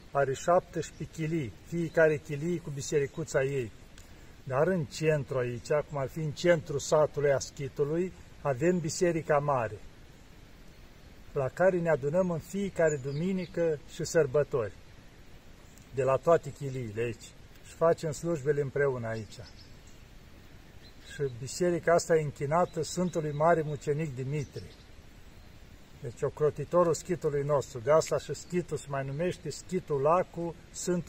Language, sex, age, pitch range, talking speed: Romanian, male, 50-69, 130-160 Hz, 120 wpm